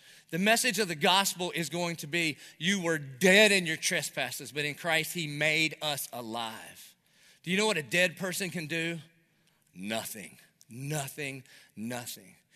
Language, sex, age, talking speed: English, male, 30-49, 160 wpm